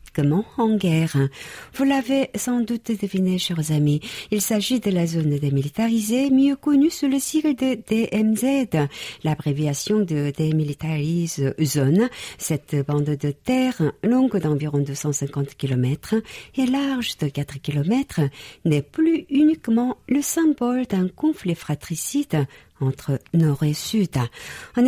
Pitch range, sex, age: 145-240 Hz, female, 50-69